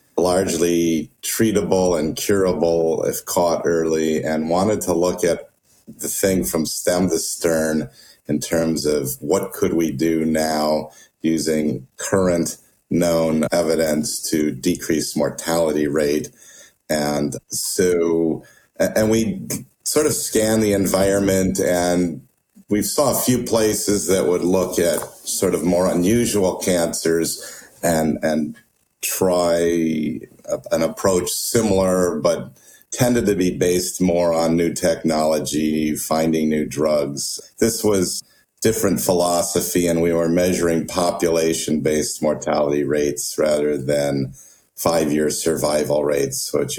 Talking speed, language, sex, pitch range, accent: 120 wpm, English, male, 75-90 Hz, American